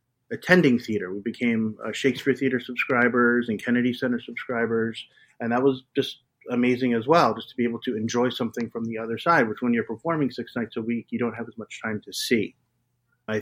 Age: 30-49